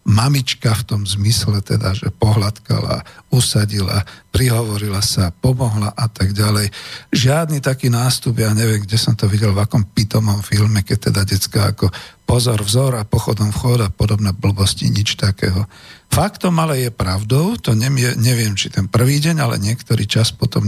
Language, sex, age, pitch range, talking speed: Slovak, male, 50-69, 105-125 Hz, 165 wpm